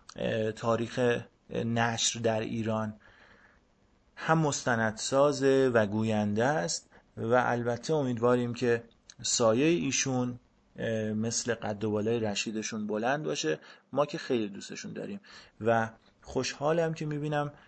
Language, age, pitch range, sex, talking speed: Persian, 30-49, 110-125 Hz, male, 110 wpm